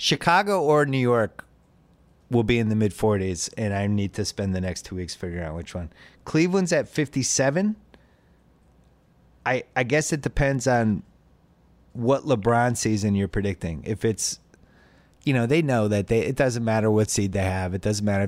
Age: 30-49